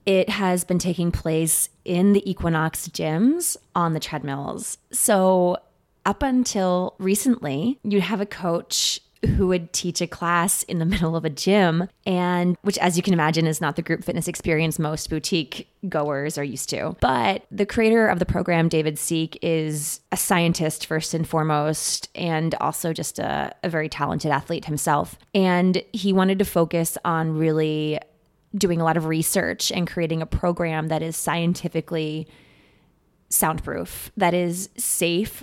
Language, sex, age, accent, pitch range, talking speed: English, female, 20-39, American, 160-190 Hz, 160 wpm